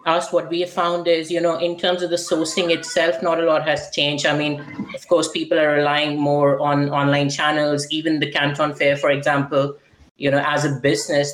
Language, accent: English, Indian